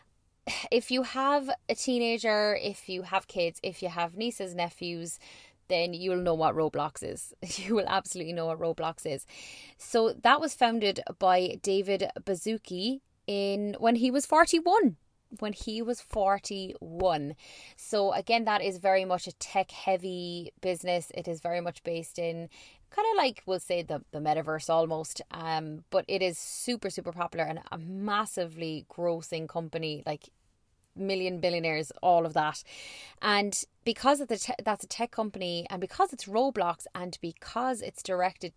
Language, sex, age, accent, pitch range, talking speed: English, female, 20-39, Irish, 170-215 Hz, 160 wpm